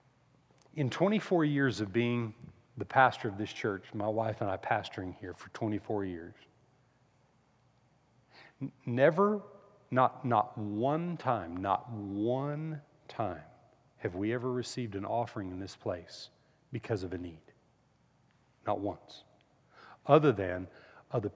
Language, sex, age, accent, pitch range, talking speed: English, male, 40-59, American, 105-135 Hz, 130 wpm